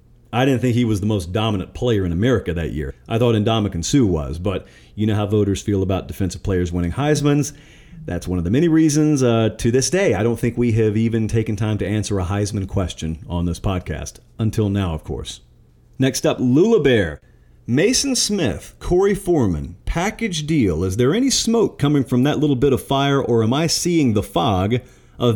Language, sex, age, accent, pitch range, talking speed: English, male, 40-59, American, 100-130 Hz, 205 wpm